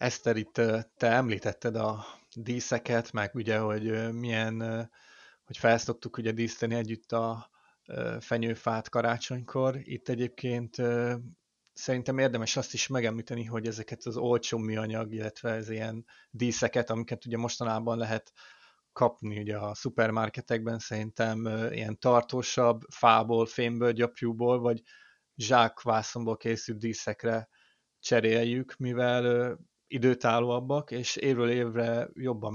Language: Hungarian